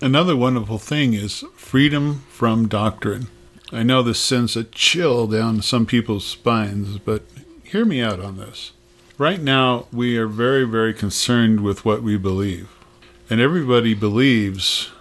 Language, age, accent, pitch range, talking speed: English, 50-69, American, 110-135 Hz, 150 wpm